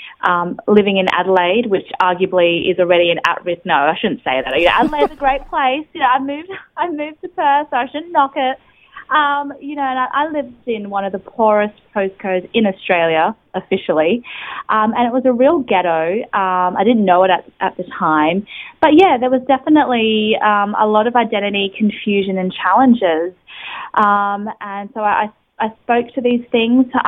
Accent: Australian